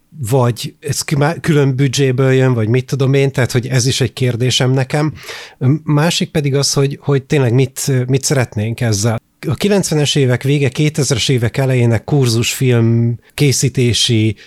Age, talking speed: 30-49, 145 wpm